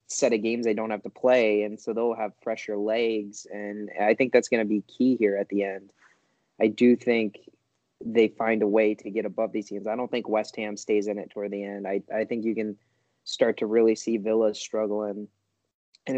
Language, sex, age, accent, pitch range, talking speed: English, male, 20-39, American, 105-115 Hz, 225 wpm